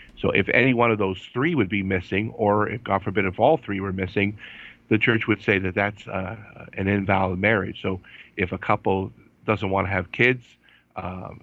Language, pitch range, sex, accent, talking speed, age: English, 95-110 Hz, male, American, 205 wpm, 50-69